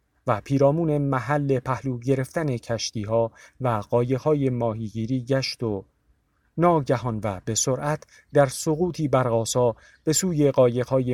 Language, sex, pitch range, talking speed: Persian, male, 105-140 Hz, 115 wpm